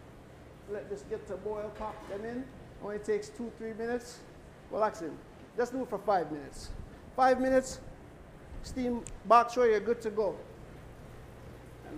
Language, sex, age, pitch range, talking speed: English, male, 60-79, 190-240 Hz, 150 wpm